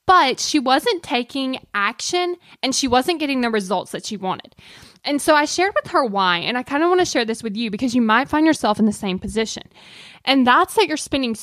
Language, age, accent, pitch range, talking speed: English, 10-29, American, 210-275 Hz, 235 wpm